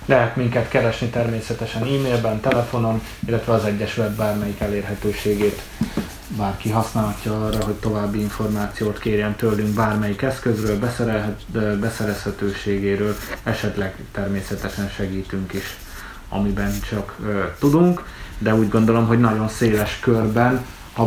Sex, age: male, 20-39